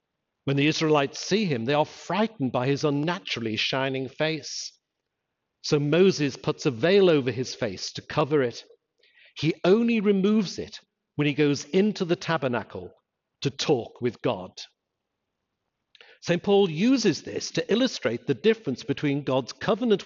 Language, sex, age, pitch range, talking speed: English, male, 50-69, 135-190 Hz, 145 wpm